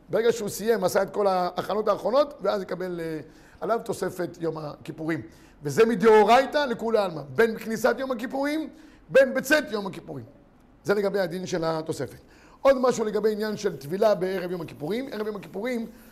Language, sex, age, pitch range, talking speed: Hebrew, male, 50-69, 190-255 Hz, 165 wpm